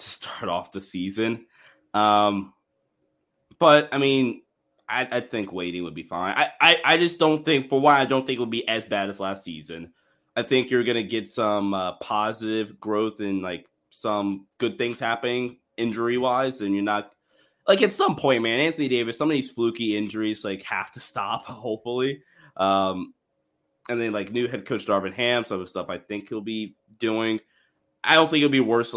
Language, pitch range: English, 100-125 Hz